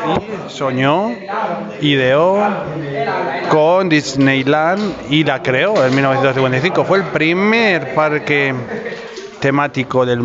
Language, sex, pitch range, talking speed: Spanish, male, 135-155 Hz, 95 wpm